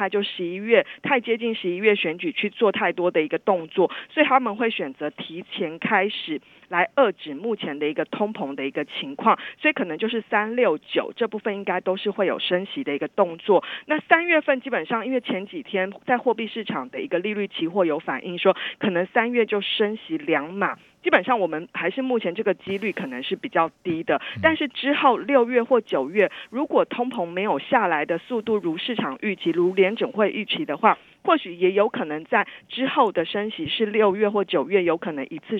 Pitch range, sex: 175-245 Hz, female